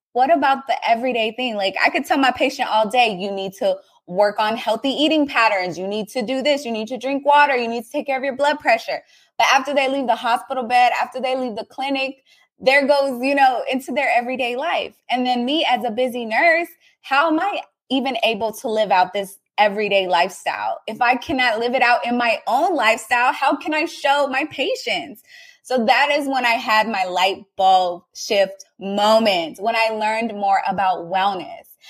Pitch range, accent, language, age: 210-275 Hz, American, English, 20-39